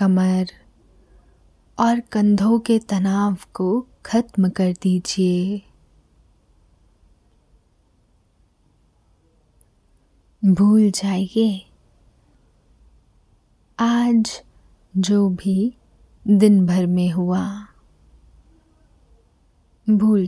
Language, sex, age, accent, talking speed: Hindi, female, 20-39, native, 55 wpm